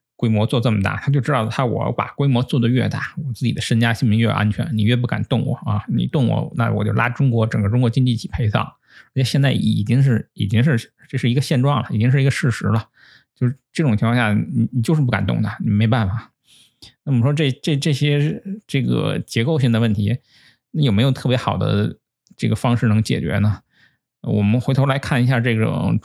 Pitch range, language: 105-130 Hz, Chinese